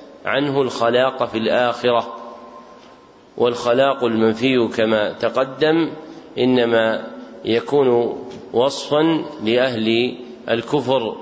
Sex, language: male, Arabic